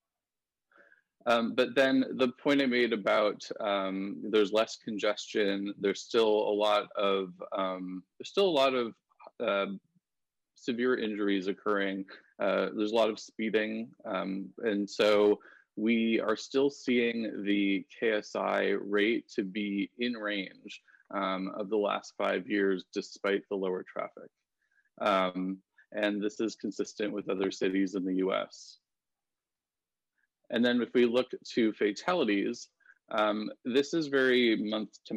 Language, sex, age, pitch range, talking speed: English, male, 20-39, 100-120 Hz, 140 wpm